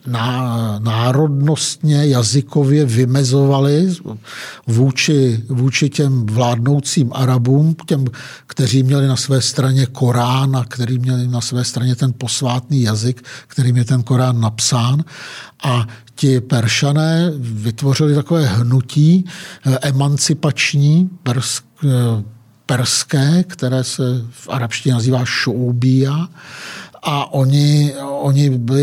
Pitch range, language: 125-150 Hz, Czech